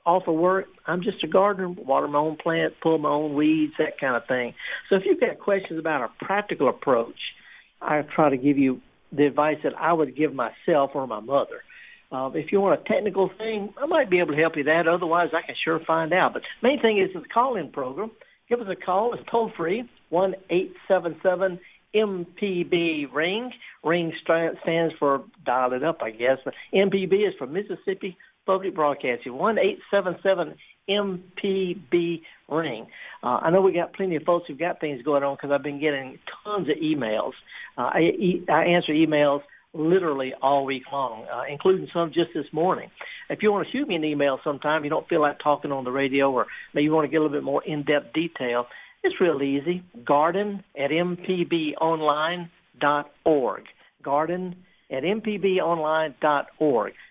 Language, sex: English, male